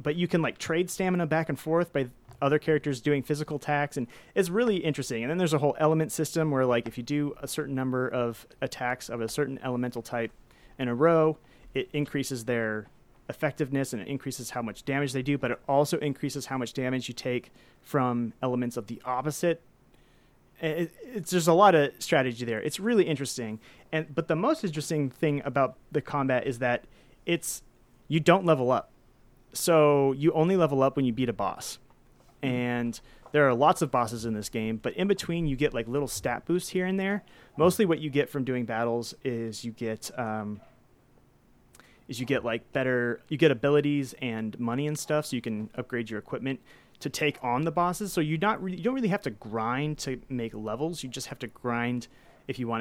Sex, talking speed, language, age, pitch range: male, 205 wpm, English, 30-49, 120-155 Hz